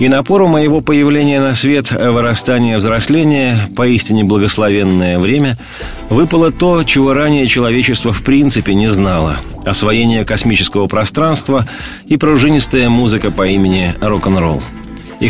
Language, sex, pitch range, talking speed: Russian, male, 100-125 Hz, 120 wpm